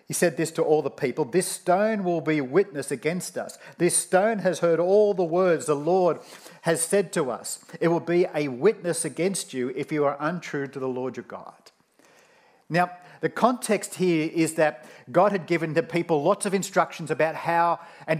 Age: 50-69